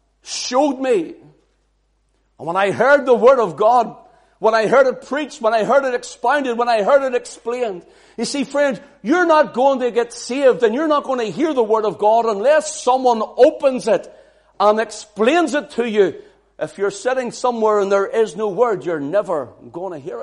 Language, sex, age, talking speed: English, male, 60-79, 200 wpm